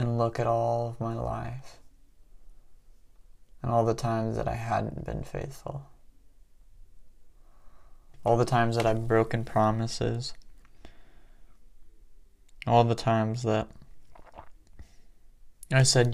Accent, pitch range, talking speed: American, 85-115 Hz, 110 wpm